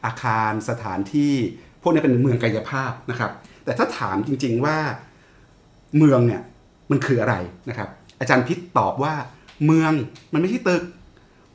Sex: male